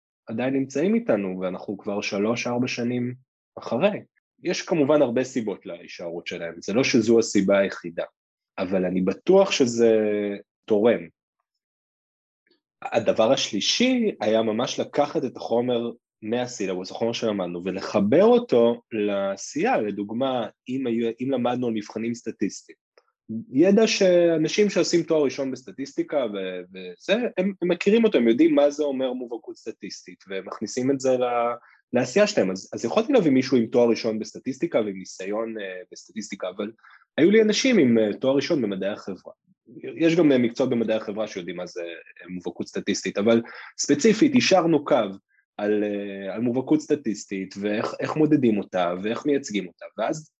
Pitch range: 105-150 Hz